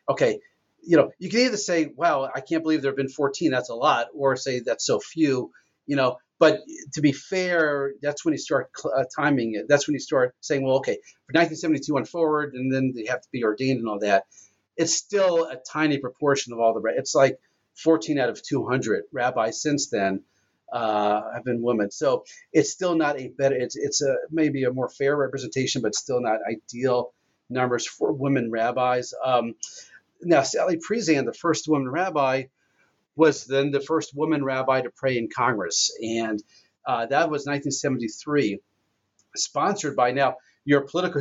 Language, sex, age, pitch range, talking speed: English, male, 40-59, 125-155 Hz, 185 wpm